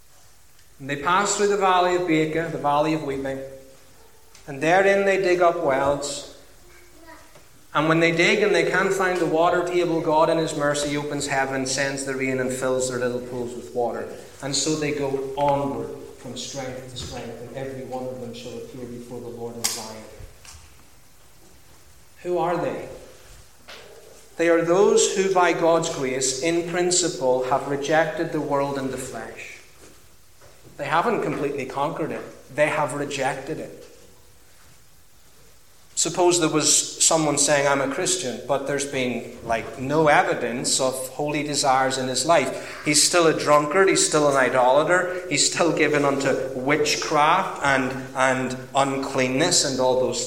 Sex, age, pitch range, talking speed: male, 30-49, 130-165 Hz, 160 wpm